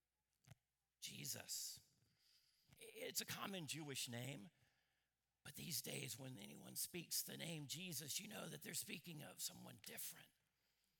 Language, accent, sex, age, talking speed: English, American, male, 50-69, 125 wpm